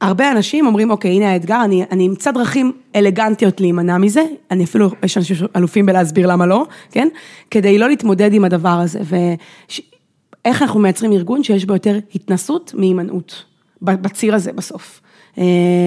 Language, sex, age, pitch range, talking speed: Hebrew, female, 20-39, 180-225 Hz, 150 wpm